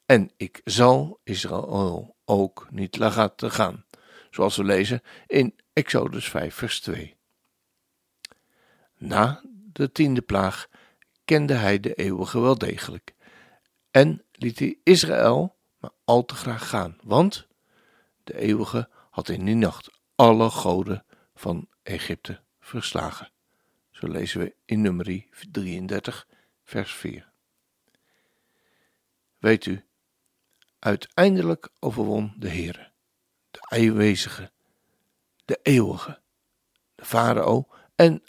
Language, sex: Dutch, male